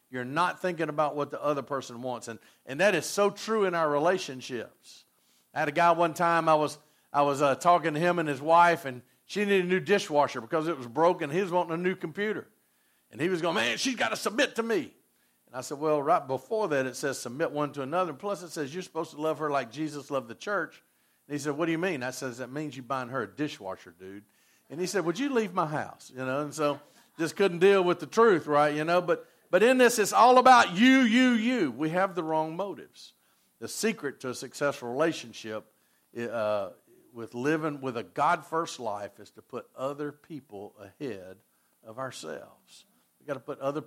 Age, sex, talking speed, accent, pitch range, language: 50-69, male, 230 wpm, American, 130-185 Hz, English